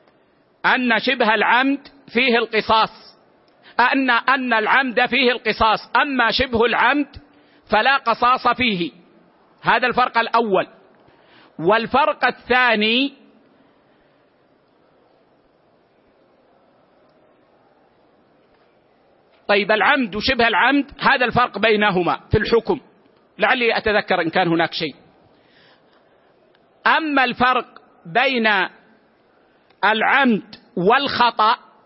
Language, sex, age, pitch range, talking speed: Arabic, male, 50-69, 220-255 Hz, 75 wpm